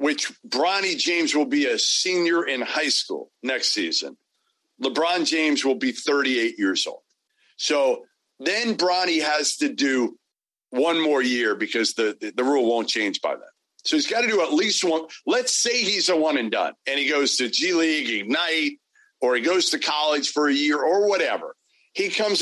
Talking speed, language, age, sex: 190 wpm, English, 40-59, male